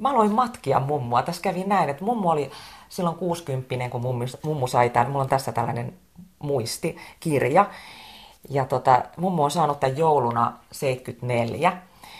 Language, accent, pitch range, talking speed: Finnish, native, 125-155 Hz, 150 wpm